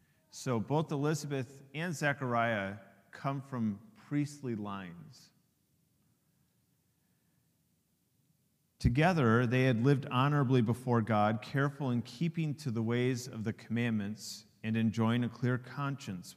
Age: 40-59